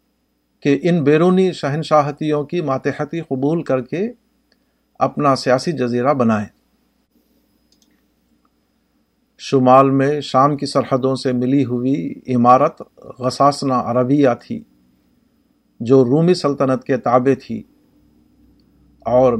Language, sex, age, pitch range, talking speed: Urdu, male, 50-69, 125-150 Hz, 100 wpm